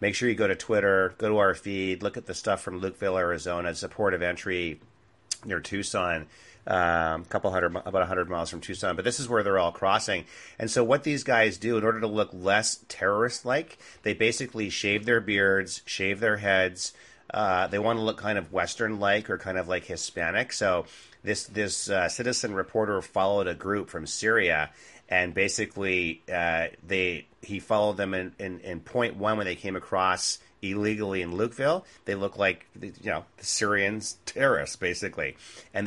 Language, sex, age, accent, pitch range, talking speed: English, male, 30-49, American, 90-110 Hz, 195 wpm